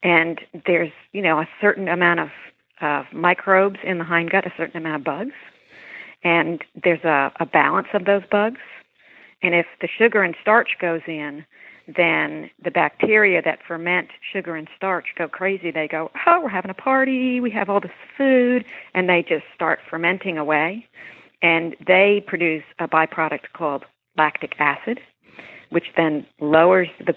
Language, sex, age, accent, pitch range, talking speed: English, female, 50-69, American, 155-185 Hz, 165 wpm